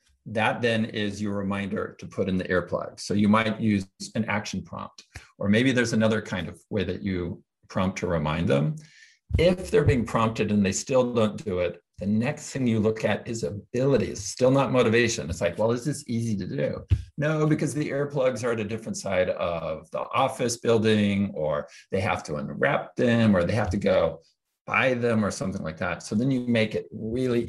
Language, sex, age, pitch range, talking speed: English, male, 50-69, 100-125 Hz, 205 wpm